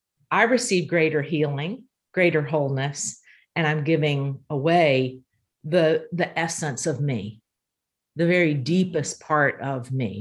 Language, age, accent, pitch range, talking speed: English, 50-69, American, 150-200 Hz, 125 wpm